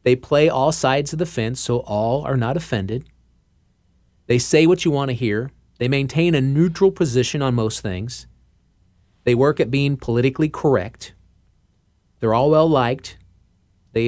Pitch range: 100-140 Hz